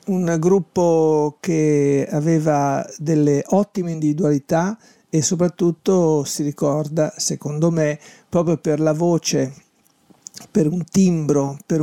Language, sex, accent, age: Italian, male, native, 50-69